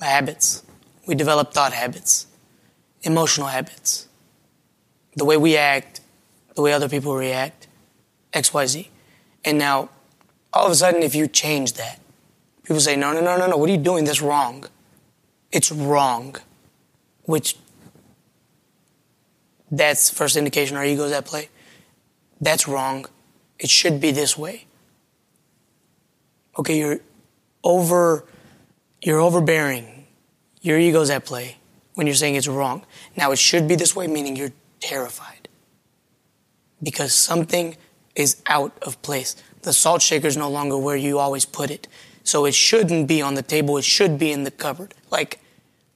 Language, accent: English, American